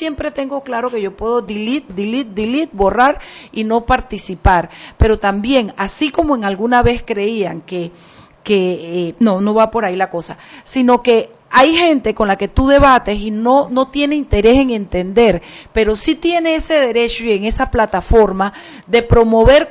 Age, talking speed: 40-59, 175 wpm